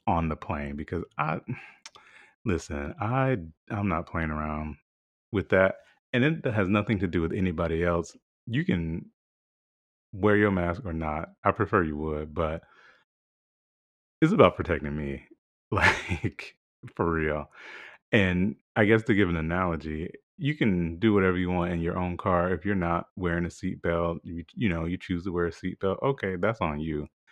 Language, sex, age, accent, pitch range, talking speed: English, male, 30-49, American, 80-105 Hz, 170 wpm